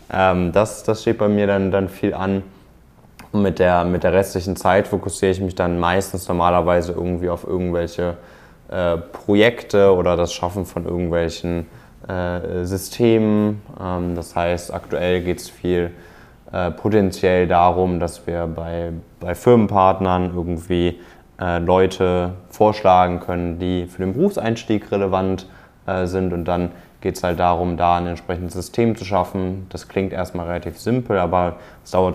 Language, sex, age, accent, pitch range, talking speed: German, male, 20-39, German, 85-95 Hz, 150 wpm